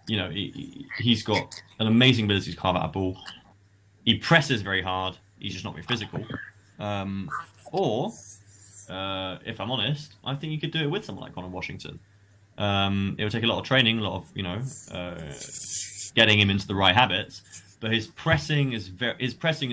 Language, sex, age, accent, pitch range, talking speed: English, male, 20-39, British, 95-115 Hz, 200 wpm